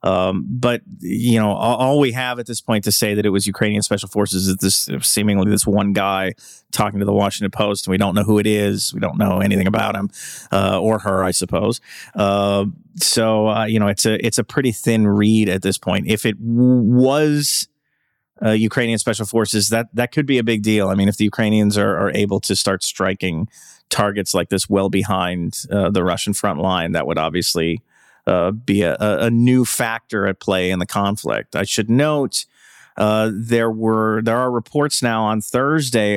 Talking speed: 210 wpm